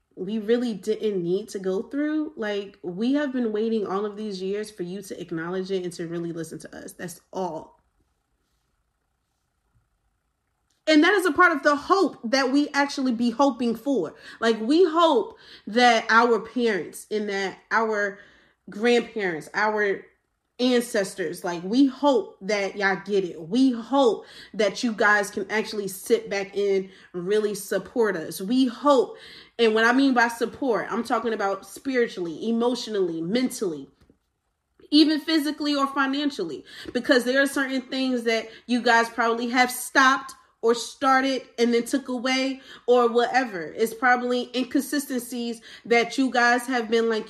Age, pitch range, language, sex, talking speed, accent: 30-49, 215-265 Hz, English, female, 155 wpm, American